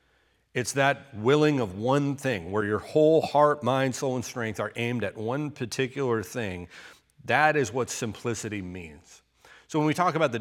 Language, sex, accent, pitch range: English, male, American, 110-140 Hz